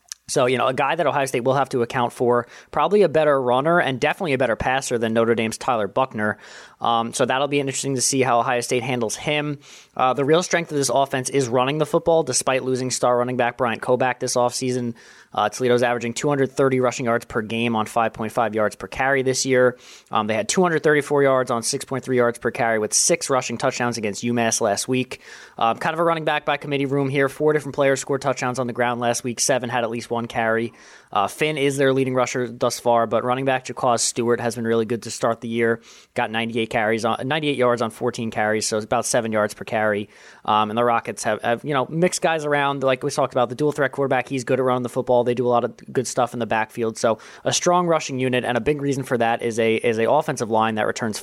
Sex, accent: male, American